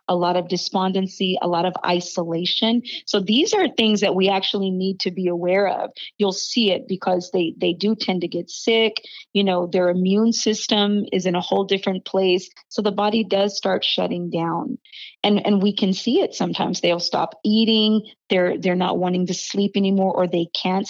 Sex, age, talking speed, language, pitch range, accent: female, 30-49, 200 wpm, English, 180-205 Hz, American